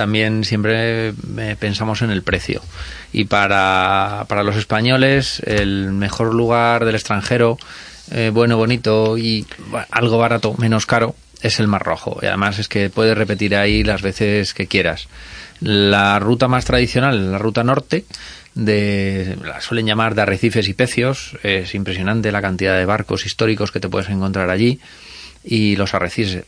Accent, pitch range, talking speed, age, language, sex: Spanish, 100-115 Hz, 155 wpm, 30-49, Spanish, male